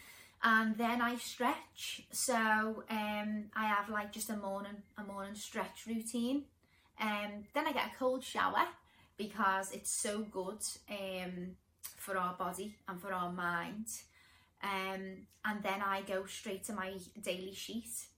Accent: British